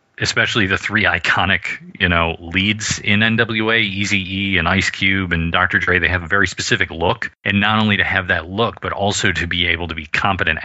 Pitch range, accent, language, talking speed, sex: 85-100 Hz, American, English, 210 wpm, male